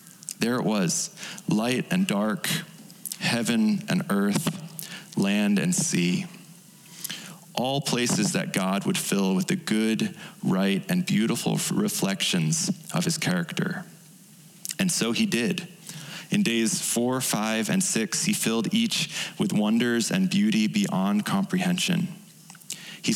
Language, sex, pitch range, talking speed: English, male, 175-195 Hz, 125 wpm